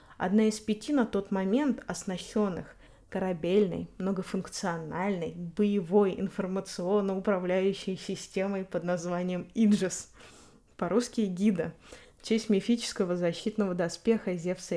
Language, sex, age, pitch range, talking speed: Russian, female, 20-39, 185-225 Hz, 95 wpm